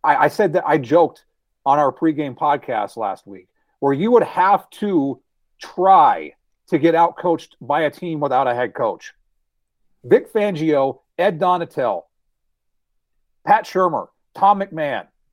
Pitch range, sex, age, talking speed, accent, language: 165-235 Hz, male, 40-59, 135 wpm, American, English